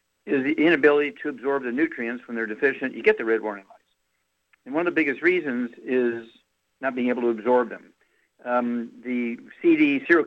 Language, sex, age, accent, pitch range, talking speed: English, male, 60-79, American, 115-150 Hz, 195 wpm